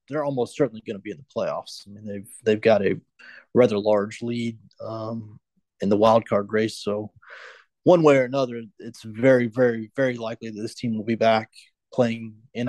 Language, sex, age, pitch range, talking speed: English, male, 30-49, 110-130 Hz, 200 wpm